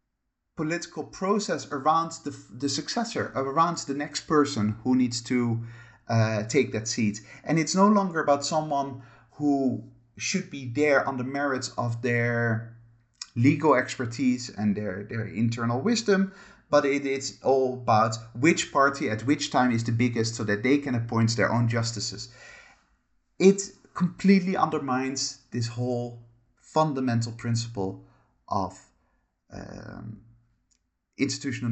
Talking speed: 130 wpm